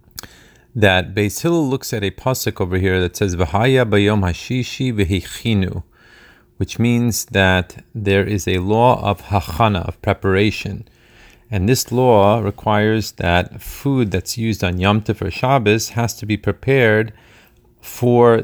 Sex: male